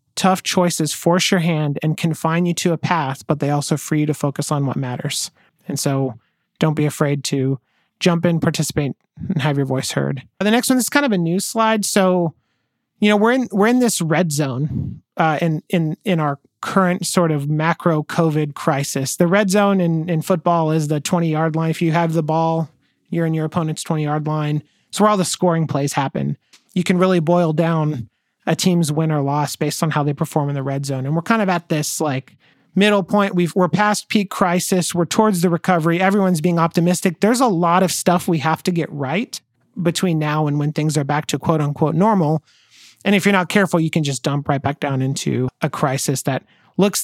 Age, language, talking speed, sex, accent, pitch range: 30-49, English, 220 wpm, male, American, 150-185 Hz